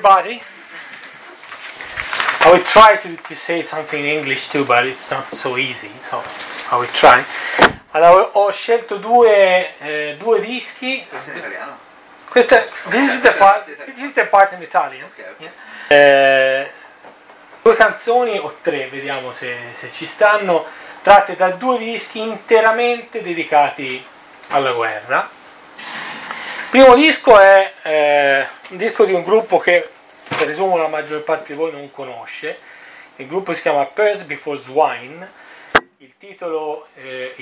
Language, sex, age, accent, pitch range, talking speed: Italian, male, 30-49, native, 140-210 Hz, 120 wpm